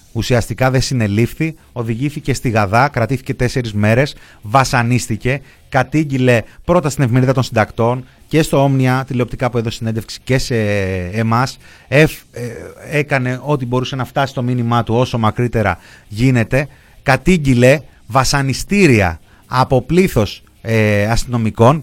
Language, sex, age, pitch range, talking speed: Greek, male, 30-49, 115-150 Hz, 125 wpm